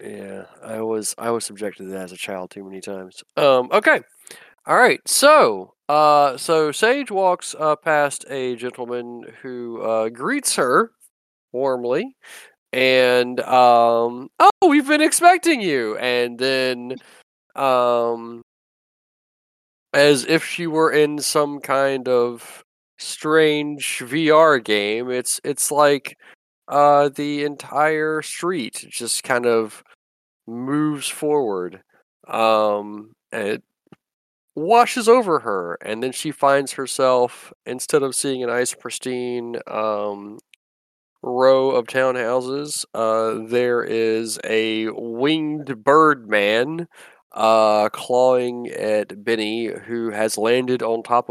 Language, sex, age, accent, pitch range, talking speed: English, male, 20-39, American, 110-145 Hz, 120 wpm